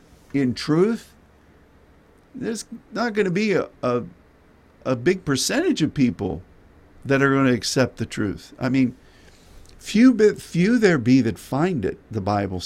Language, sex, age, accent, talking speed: English, male, 50-69, American, 150 wpm